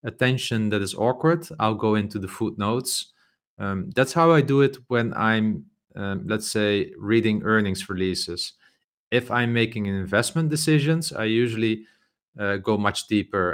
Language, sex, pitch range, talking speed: English, male, 105-120 Hz, 150 wpm